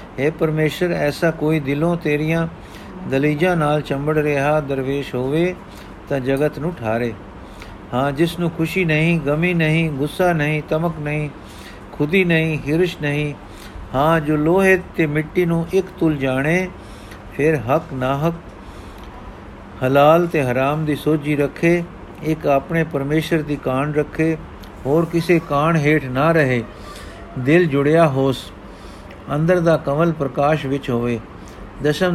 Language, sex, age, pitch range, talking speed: Punjabi, male, 50-69, 130-160 Hz, 135 wpm